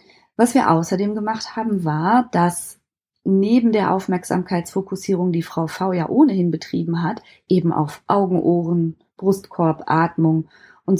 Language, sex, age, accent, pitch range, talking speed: German, female, 30-49, German, 170-210 Hz, 130 wpm